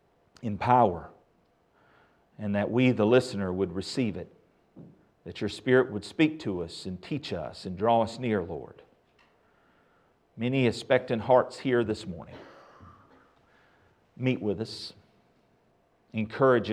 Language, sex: English, male